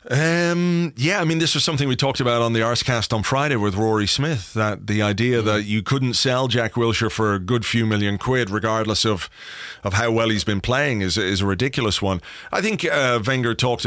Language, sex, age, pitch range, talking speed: English, male, 30-49, 105-130 Hz, 220 wpm